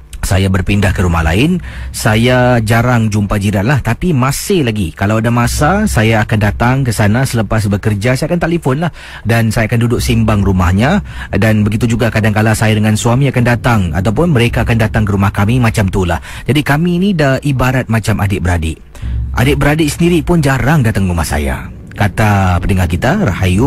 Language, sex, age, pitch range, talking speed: Indonesian, male, 40-59, 100-140 Hz, 175 wpm